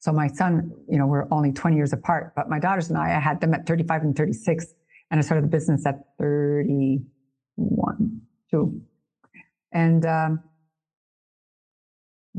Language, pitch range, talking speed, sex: English, 155-185 Hz, 155 wpm, female